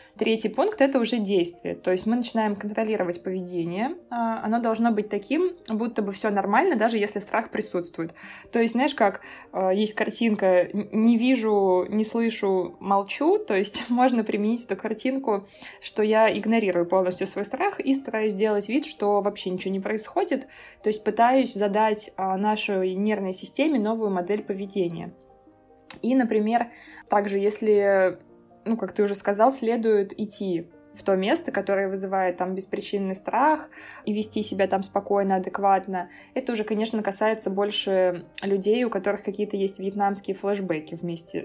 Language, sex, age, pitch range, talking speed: Russian, female, 20-39, 195-225 Hz, 150 wpm